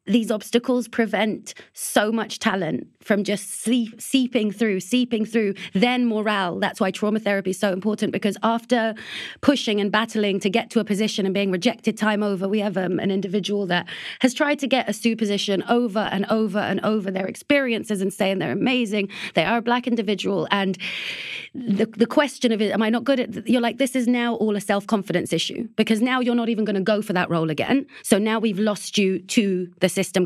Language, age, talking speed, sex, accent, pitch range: English, 30-49, 210 wpm, female, British, 195-230 Hz